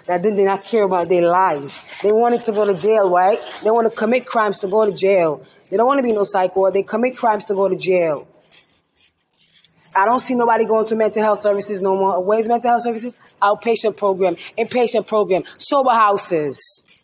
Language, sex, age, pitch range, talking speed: English, female, 20-39, 200-240 Hz, 205 wpm